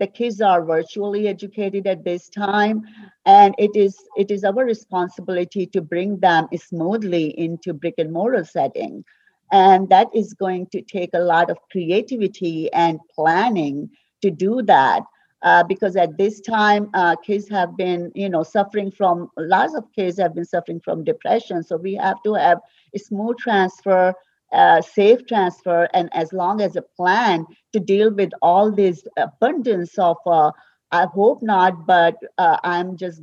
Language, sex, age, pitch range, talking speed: English, female, 50-69, 175-205 Hz, 165 wpm